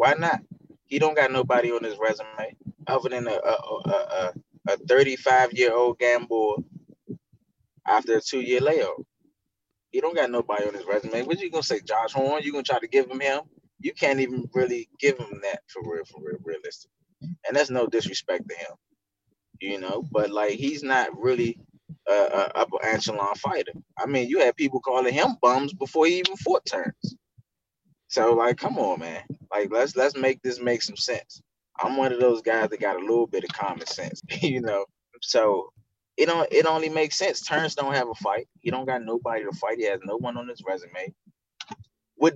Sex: male